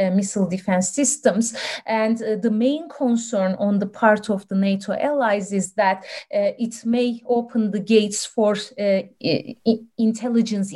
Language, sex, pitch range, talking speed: English, female, 195-225 Hz, 155 wpm